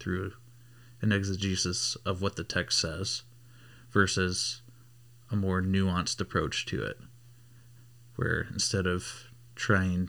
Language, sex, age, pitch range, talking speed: English, male, 30-49, 95-120 Hz, 115 wpm